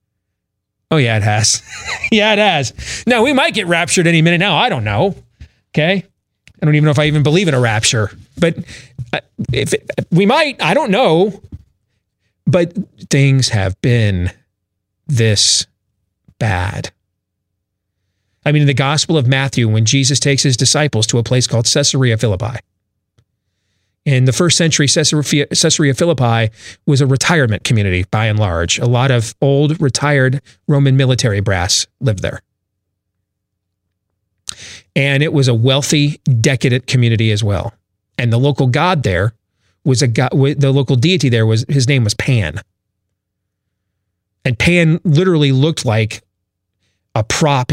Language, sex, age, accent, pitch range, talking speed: English, male, 40-59, American, 100-145 Hz, 145 wpm